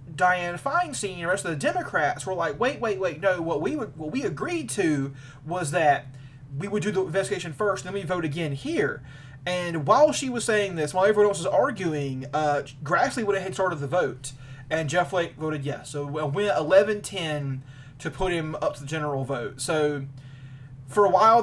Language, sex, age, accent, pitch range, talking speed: English, male, 30-49, American, 145-215 Hz, 205 wpm